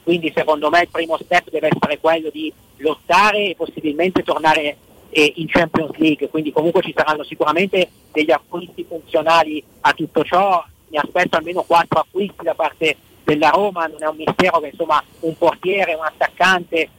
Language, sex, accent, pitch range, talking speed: Italian, male, native, 155-185 Hz, 165 wpm